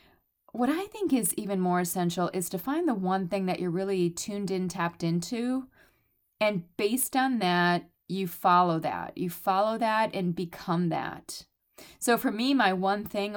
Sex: female